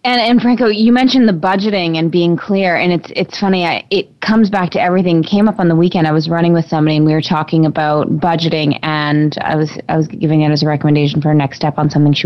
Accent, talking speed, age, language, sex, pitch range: American, 260 wpm, 20-39, English, female, 150-175 Hz